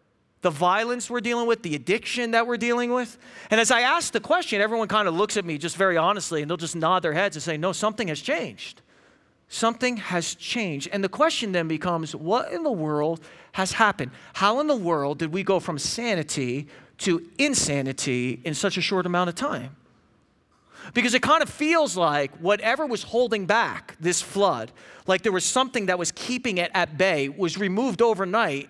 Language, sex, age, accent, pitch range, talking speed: English, male, 40-59, American, 160-230 Hz, 200 wpm